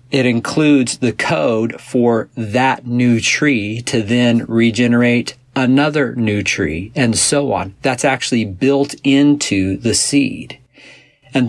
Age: 50-69